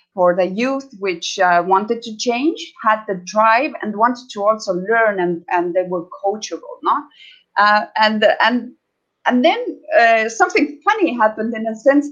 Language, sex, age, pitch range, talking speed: English, female, 30-49, 195-270 Hz, 170 wpm